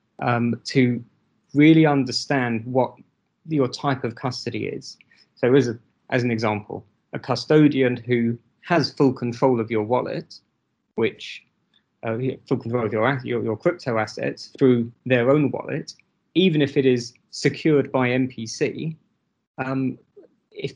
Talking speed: 135 wpm